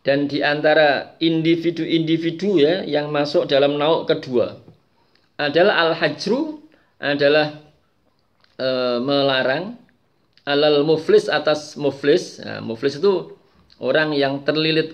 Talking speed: 95 wpm